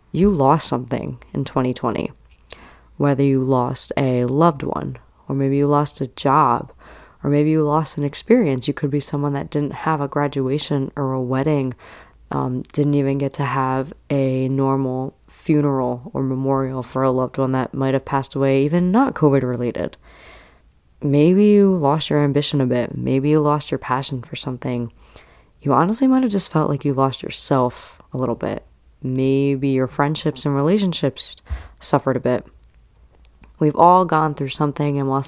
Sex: female